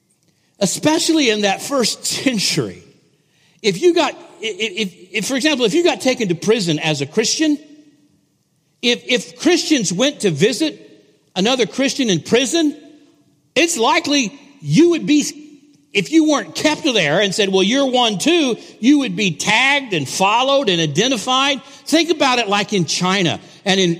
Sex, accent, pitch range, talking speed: male, American, 185-280 Hz, 160 wpm